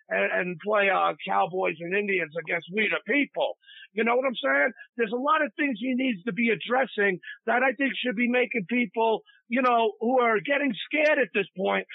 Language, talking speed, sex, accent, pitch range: English, 205 wpm, male, American, 220-290 Hz